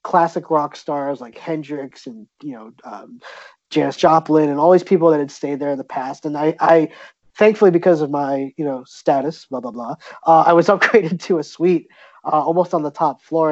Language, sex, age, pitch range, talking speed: English, male, 20-39, 145-175 Hz, 215 wpm